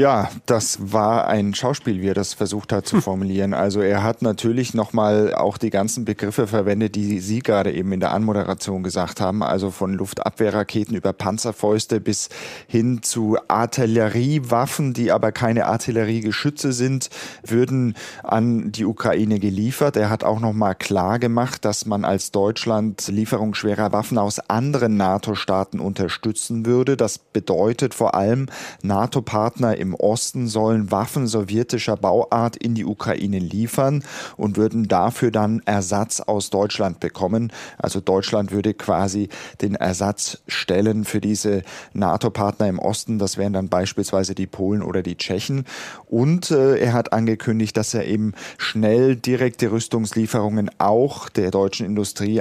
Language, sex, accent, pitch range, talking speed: German, male, German, 100-115 Hz, 145 wpm